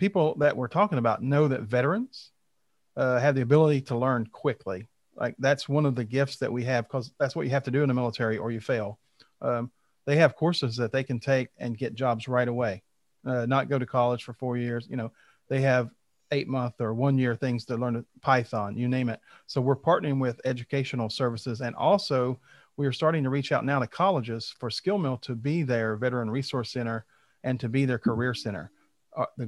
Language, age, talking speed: English, 40-59, 220 wpm